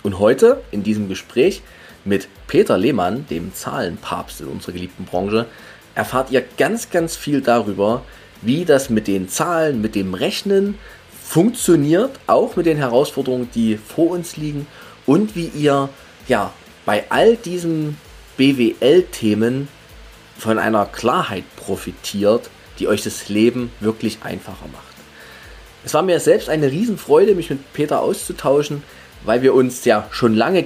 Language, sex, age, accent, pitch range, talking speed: German, male, 30-49, German, 110-160 Hz, 140 wpm